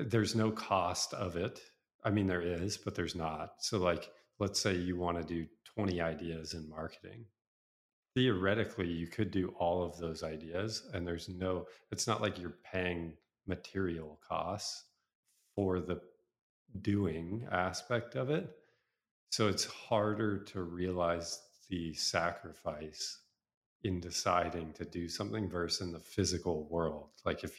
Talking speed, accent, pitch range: 145 wpm, American, 85-100 Hz